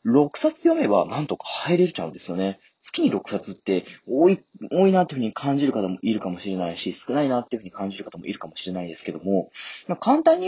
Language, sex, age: Japanese, male, 30-49